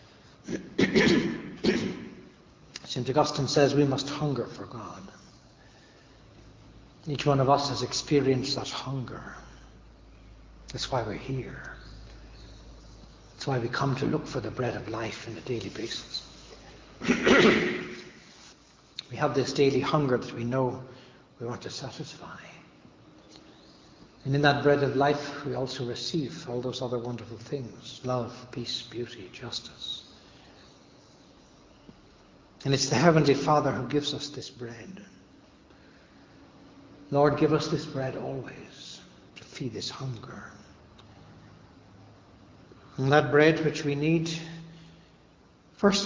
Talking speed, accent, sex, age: 120 wpm, Irish, male, 60-79